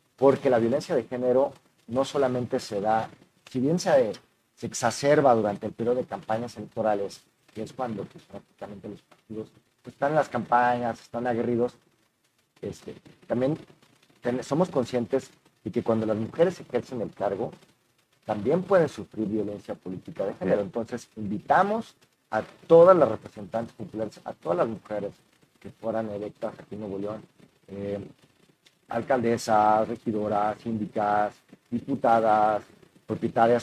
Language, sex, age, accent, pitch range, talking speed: Spanish, male, 40-59, Mexican, 110-130 Hz, 135 wpm